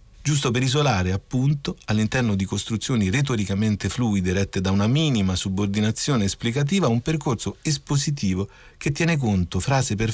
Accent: native